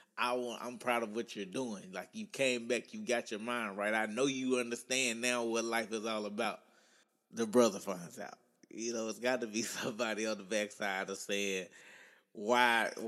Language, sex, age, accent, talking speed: English, male, 20-39, American, 200 wpm